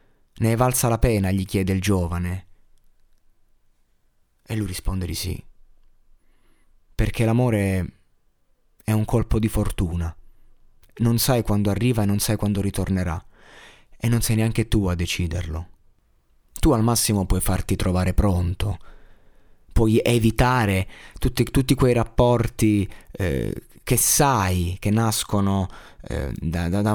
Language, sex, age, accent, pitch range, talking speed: Italian, male, 30-49, native, 90-115 Hz, 130 wpm